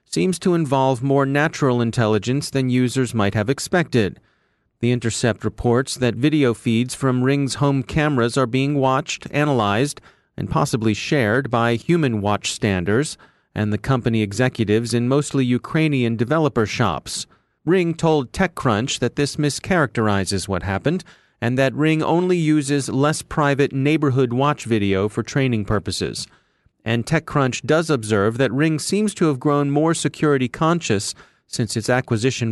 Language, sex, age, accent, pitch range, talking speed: English, male, 40-59, American, 115-145 Hz, 140 wpm